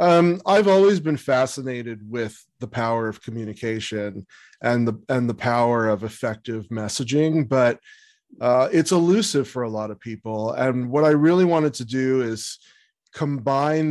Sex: male